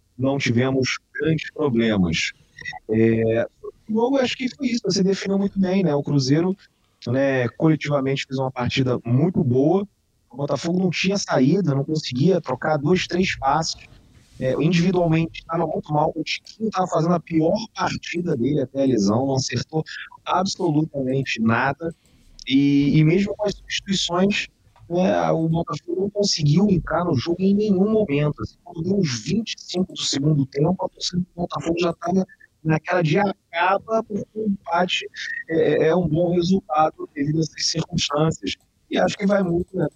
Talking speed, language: 155 wpm, Portuguese